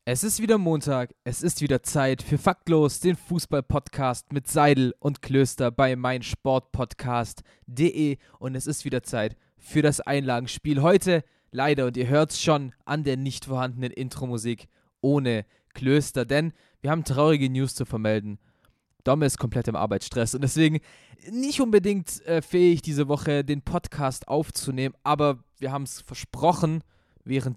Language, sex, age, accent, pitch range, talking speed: German, male, 20-39, German, 130-160 Hz, 150 wpm